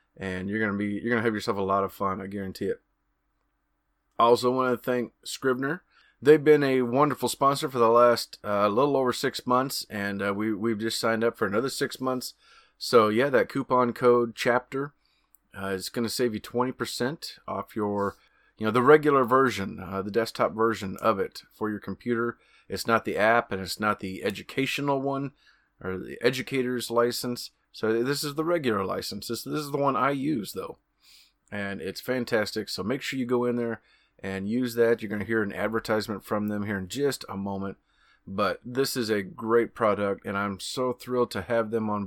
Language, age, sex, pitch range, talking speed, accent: English, 30-49, male, 105-125 Hz, 200 wpm, American